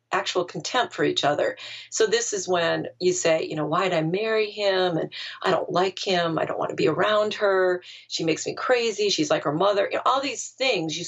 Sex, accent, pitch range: female, American, 165-210 Hz